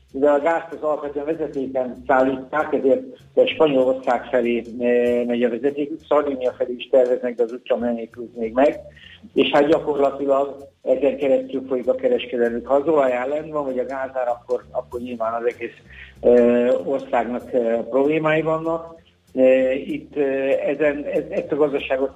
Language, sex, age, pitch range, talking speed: Hungarian, male, 50-69, 120-140 Hz, 145 wpm